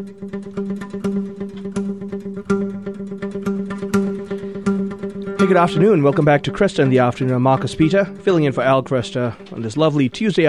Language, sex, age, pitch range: English, male, 30-49, 125-185 Hz